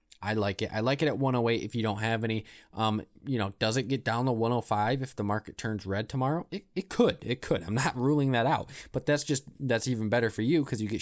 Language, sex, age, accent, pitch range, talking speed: English, male, 20-39, American, 105-135 Hz, 265 wpm